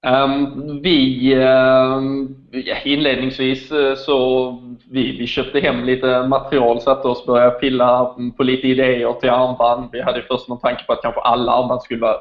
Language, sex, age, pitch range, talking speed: English, male, 20-39, 120-135 Hz, 175 wpm